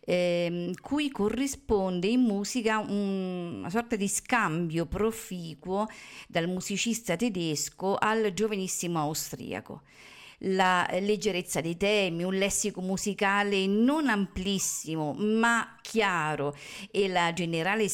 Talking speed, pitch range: 105 wpm, 170-215 Hz